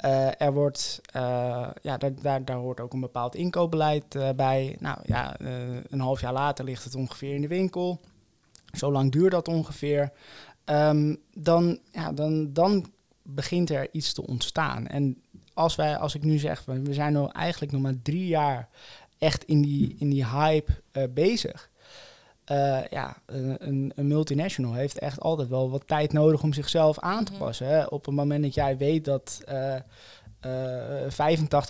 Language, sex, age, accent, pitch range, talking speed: Dutch, male, 20-39, Dutch, 135-155 Hz, 175 wpm